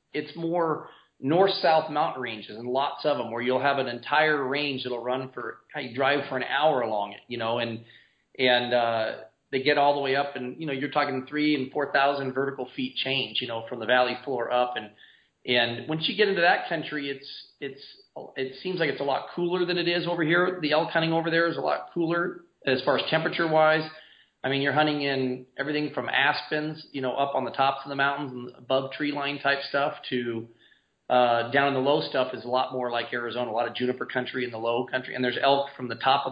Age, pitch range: 40-59, 125-150 Hz